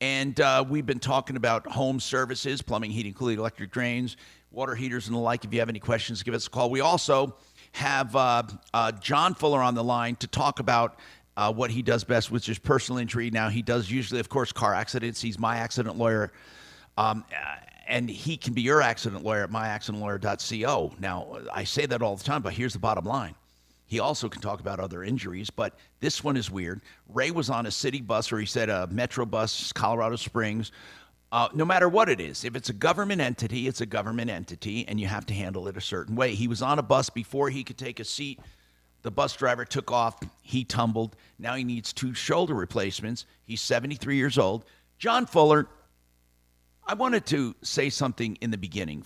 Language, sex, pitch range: English, male, 105-130 Hz